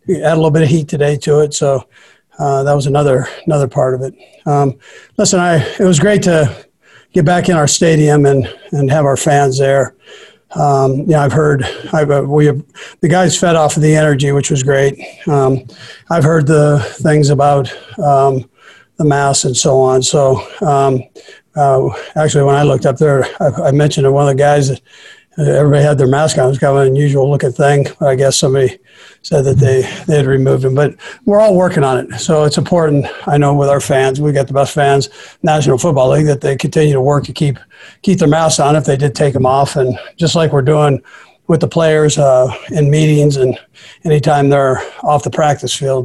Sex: male